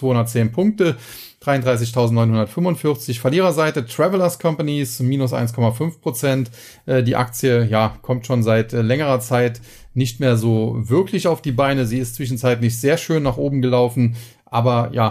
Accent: German